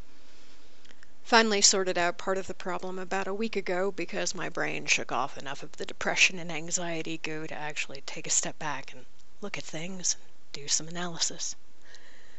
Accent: American